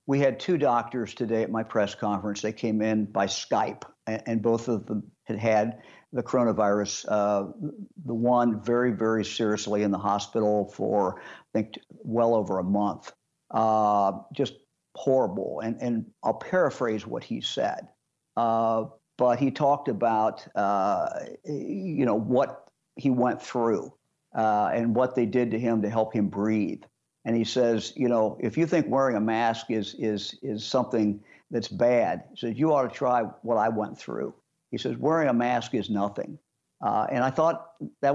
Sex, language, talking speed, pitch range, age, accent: male, English, 175 wpm, 105-125 Hz, 50-69, American